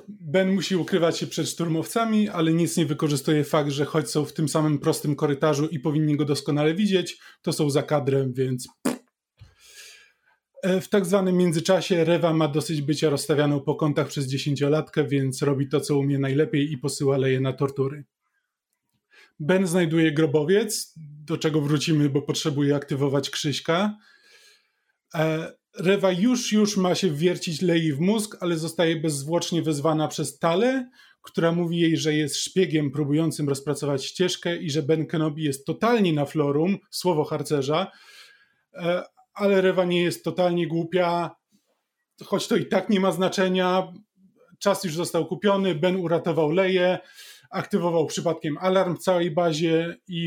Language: Polish